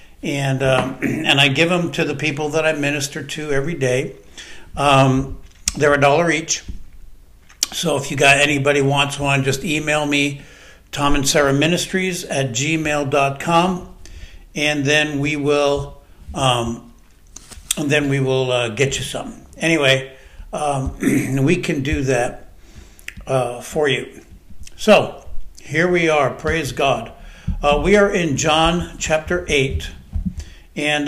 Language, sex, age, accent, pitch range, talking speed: English, male, 60-79, American, 135-160 Hz, 140 wpm